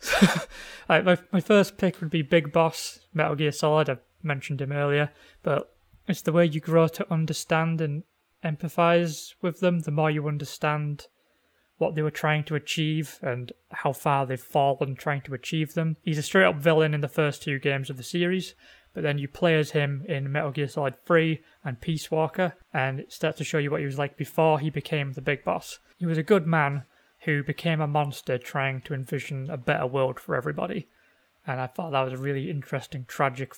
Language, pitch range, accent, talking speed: English, 140-165 Hz, British, 210 wpm